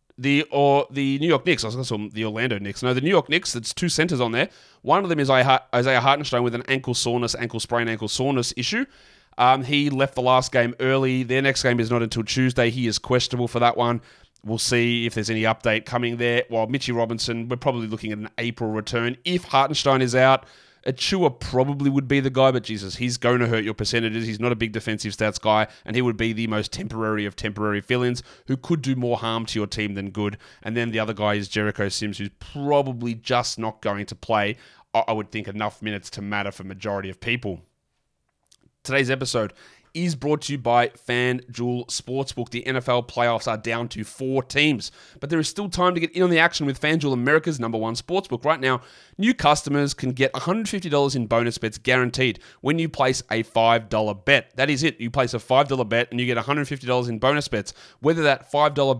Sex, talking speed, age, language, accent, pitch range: male, 220 wpm, 30-49, English, Australian, 115-135 Hz